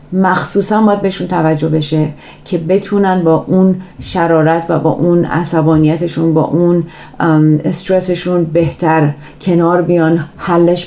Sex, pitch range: female, 155-180 Hz